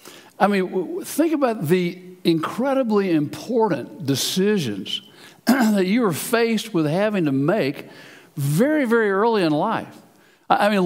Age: 60-79